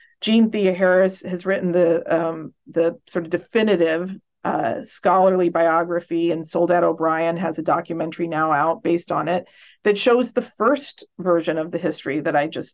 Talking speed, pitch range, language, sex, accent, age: 170 wpm, 170-200 Hz, English, female, American, 40-59